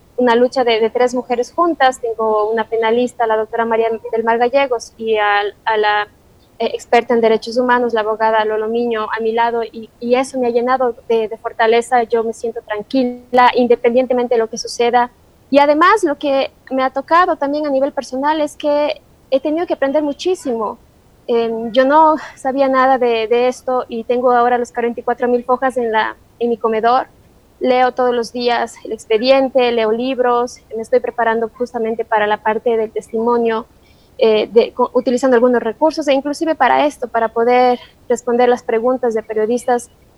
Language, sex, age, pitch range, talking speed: Spanish, female, 20-39, 230-260 Hz, 180 wpm